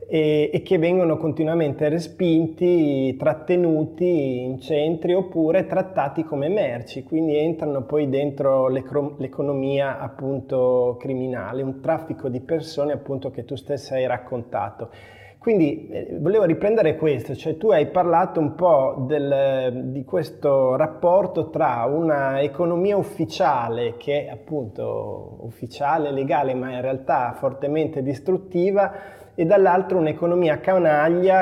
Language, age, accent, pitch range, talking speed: Italian, 20-39, native, 135-170 Hz, 120 wpm